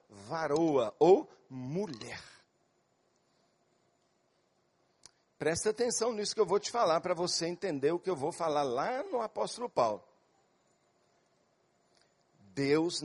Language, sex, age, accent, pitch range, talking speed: Portuguese, male, 50-69, Brazilian, 145-215 Hz, 110 wpm